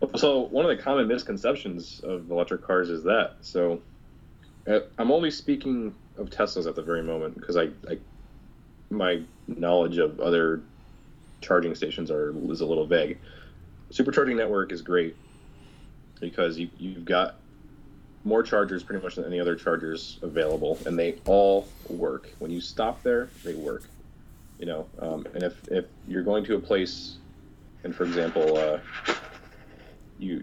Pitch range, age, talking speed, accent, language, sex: 80-100 Hz, 20-39, 155 wpm, American, English, male